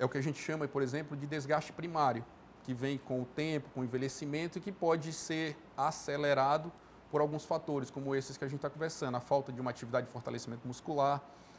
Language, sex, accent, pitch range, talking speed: Portuguese, male, Brazilian, 130-155 Hz, 215 wpm